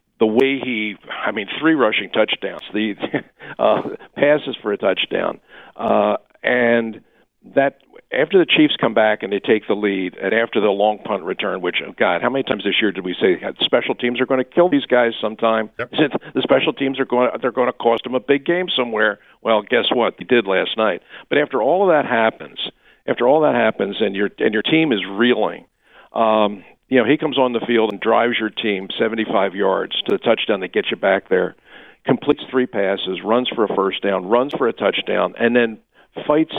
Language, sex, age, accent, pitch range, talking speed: English, male, 50-69, American, 110-130 Hz, 215 wpm